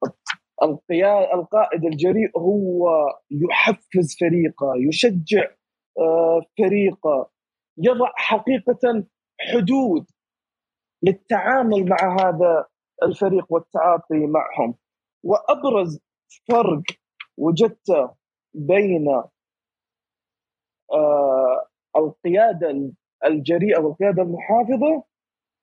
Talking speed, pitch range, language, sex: 60 wpm, 170-235 Hz, Arabic, male